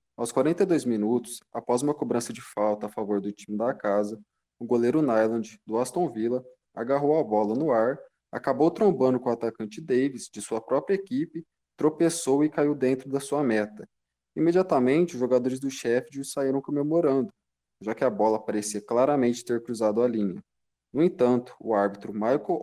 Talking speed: 170 wpm